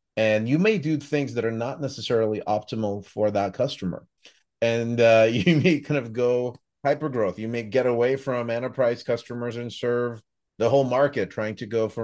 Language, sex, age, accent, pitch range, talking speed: English, male, 30-49, American, 100-125 Hz, 190 wpm